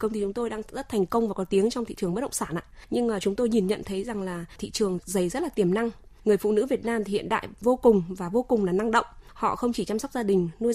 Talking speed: 325 wpm